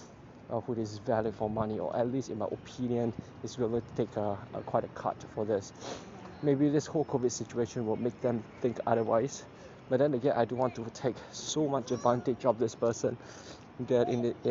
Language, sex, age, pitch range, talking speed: English, male, 20-39, 115-130 Hz, 210 wpm